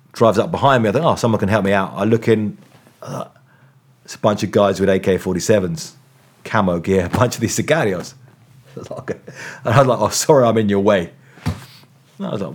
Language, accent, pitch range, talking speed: English, British, 110-135 Hz, 230 wpm